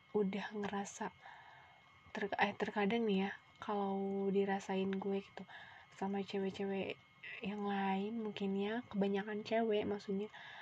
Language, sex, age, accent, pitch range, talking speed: Indonesian, female, 20-39, native, 200-230 Hz, 115 wpm